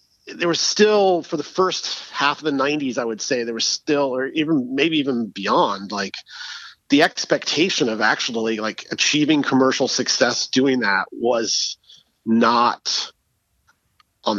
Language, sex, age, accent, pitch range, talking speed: English, male, 40-59, American, 120-155 Hz, 145 wpm